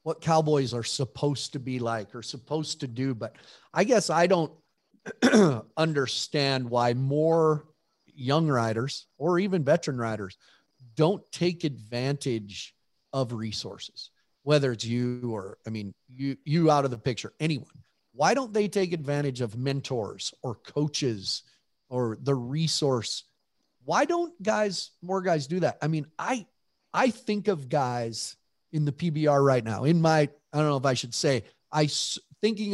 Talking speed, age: 155 wpm, 40-59